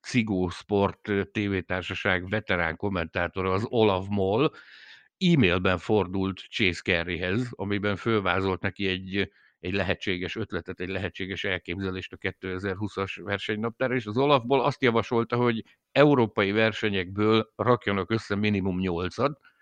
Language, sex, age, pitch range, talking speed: Hungarian, male, 60-79, 95-115 Hz, 115 wpm